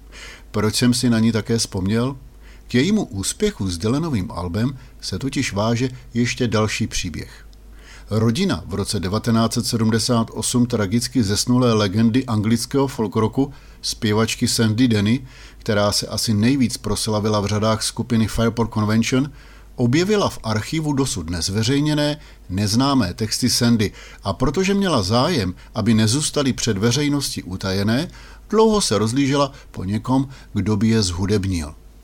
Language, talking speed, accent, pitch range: Czech, 125 wpm, native, 105-130 Hz